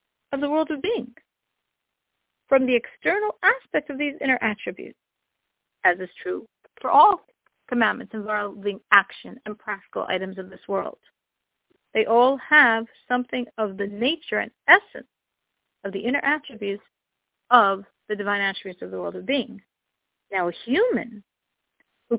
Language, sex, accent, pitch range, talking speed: English, female, American, 220-310 Hz, 145 wpm